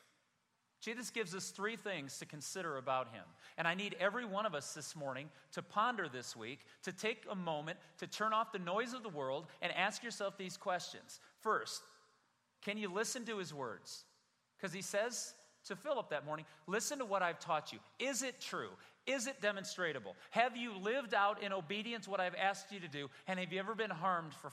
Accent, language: American, English